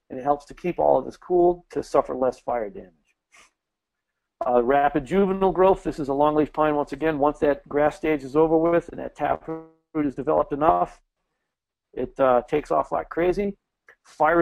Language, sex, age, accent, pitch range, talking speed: English, male, 40-59, American, 135-165 Hz, 185 wpm